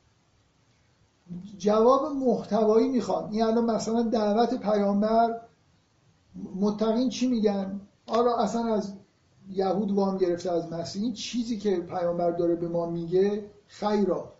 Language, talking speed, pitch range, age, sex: Persian, 120 wpm, 145-210 Hz, 50-69, male